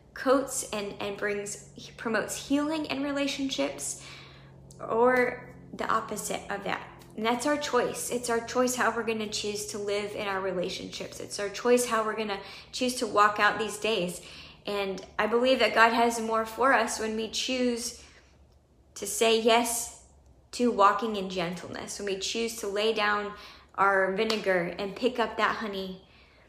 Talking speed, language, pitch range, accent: 170 wpm, English, 205-245 Hz, American